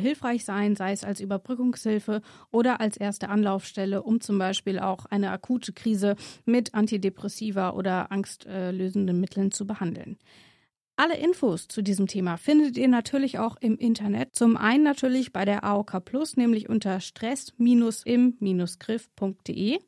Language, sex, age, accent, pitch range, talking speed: German, female, 30-49, German, 200-255 Hz, 140 wpm